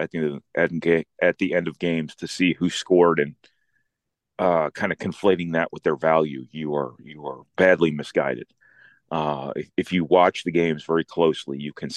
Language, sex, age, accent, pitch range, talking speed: English, male, 40-59, American, 75-90 Hz, 180 wpm